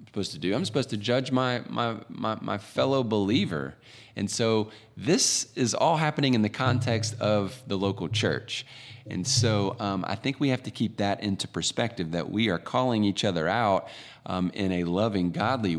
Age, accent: 30-49, American